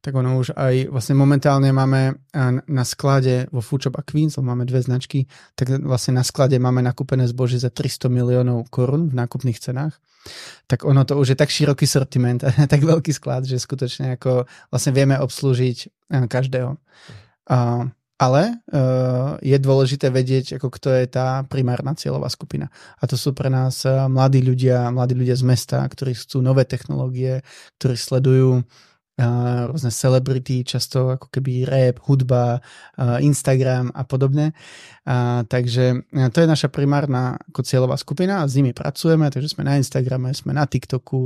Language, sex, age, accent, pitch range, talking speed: Czech, male, 20-39, native, 125-145 Hz, 150 wpm